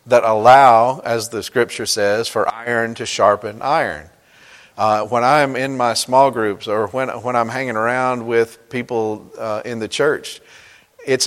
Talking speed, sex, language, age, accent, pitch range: 165 wpm, male, English, 50-69, American, 115-135 Hz